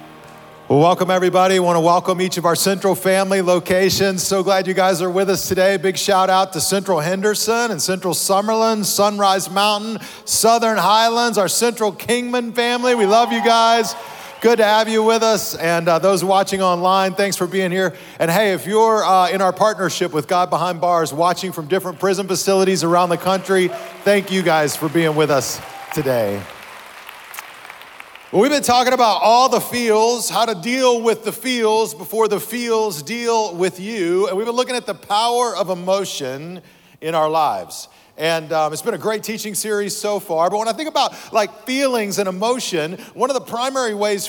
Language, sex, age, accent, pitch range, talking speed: English, male, 40-59, American, 180-220 Hz, 190 wpm